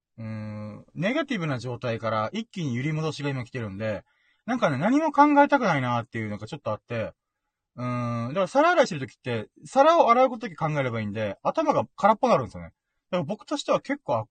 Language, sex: Japanese, male